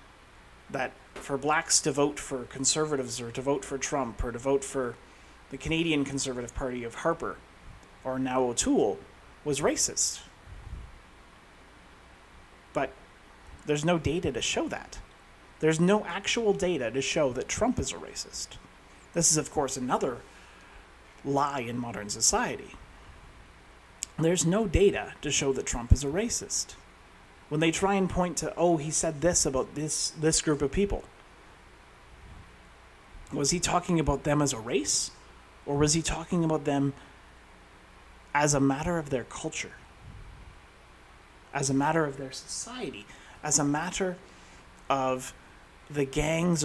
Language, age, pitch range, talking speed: English, 30-49, 125-160 Hz, 145 wpm